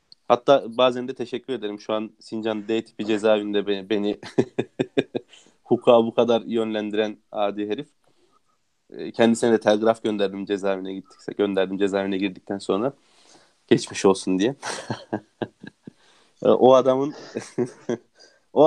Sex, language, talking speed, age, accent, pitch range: male, Turkish, 115 wpm, 30-49, native, 105-140 Hz